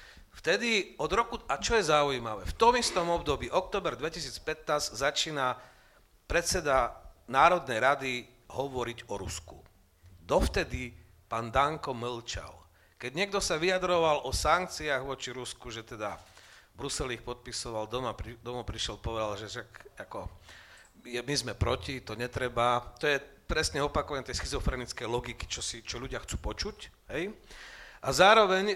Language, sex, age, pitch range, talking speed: Slovak, male, 40-59, 110-145 Hz, 140 wpm